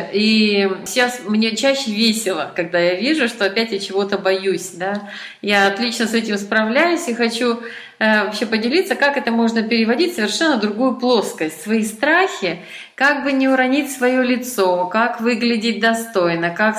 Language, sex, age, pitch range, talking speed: Russian, female, 30-49, 195-255 Hz, 150 wpm